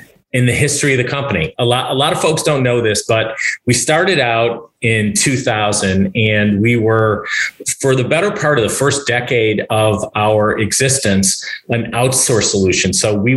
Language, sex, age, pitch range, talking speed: English, male, 40-59, 110-125 Hz, 175 wpm